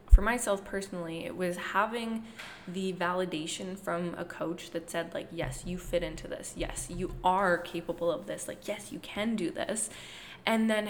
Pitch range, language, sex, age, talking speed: 175-205 Hz, English, female, 20-39, 180 wpm